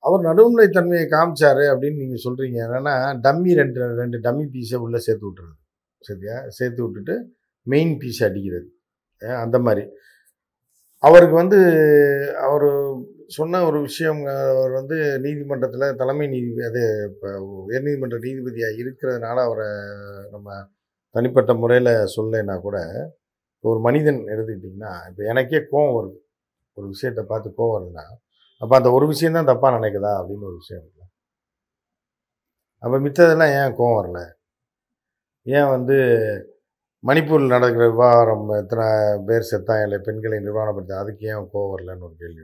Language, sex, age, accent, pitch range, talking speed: Tamil, male, 50-69, native, 105-140 Hz, 125 wpm